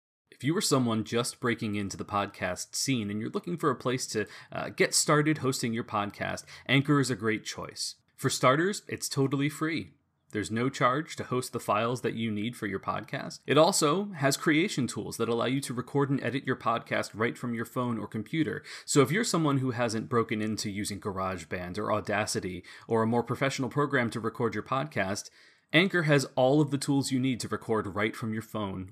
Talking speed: 210 wpm